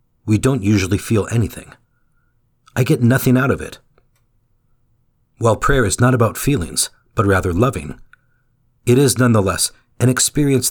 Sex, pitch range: male, 110-125 Hz